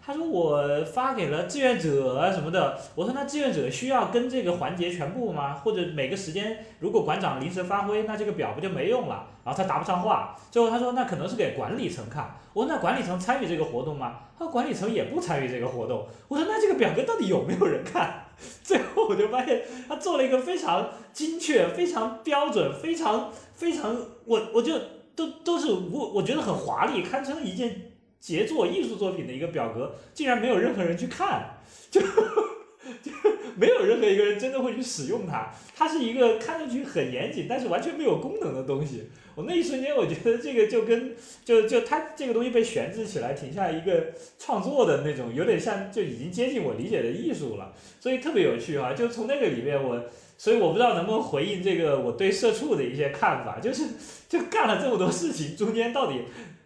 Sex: male